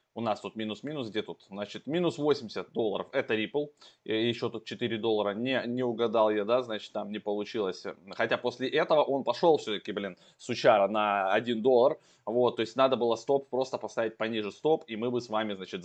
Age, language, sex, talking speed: 20-39, Russian, male, 200 wpm